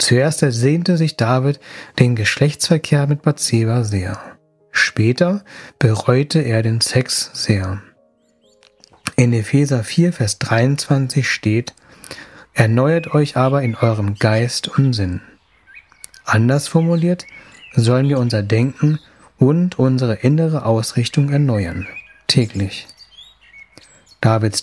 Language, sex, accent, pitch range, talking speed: German, male, German, 110-145 Hz, 100 wpm